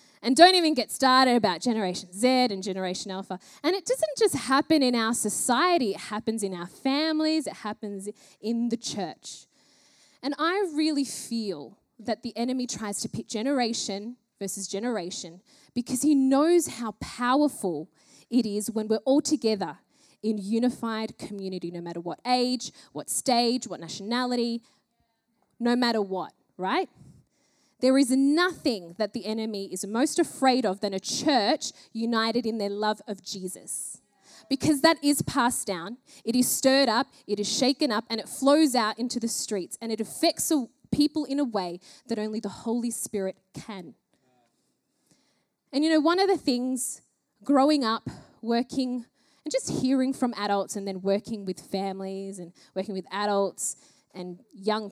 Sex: female